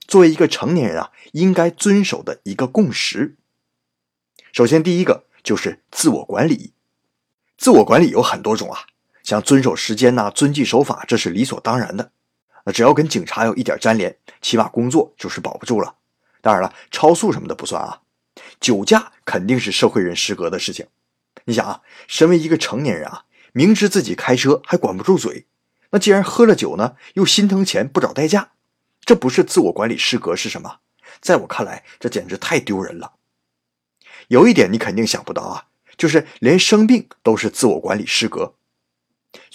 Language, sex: Chinese, male